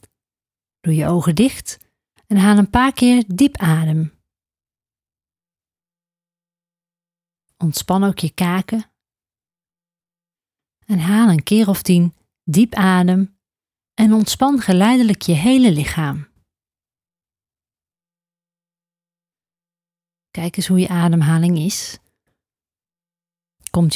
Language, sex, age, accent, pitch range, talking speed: Dutch, female, 30-49, Dutch, 165-195 Hz, 90 wpm